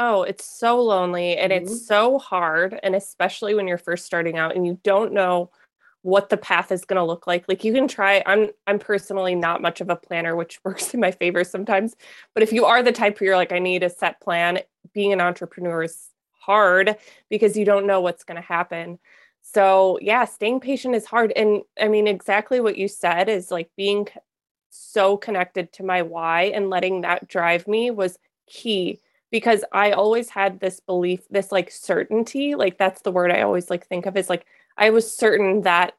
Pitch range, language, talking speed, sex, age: 180-220 Hz, English, 205 wpm, female, 20-39